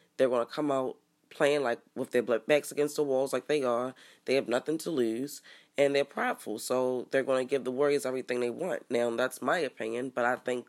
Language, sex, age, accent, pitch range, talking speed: English, female, 20-39, American, 120-140 Hz, 230 wpm